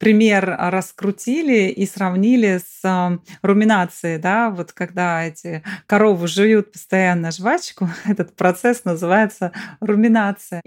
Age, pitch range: 30-49, 195-240 Hz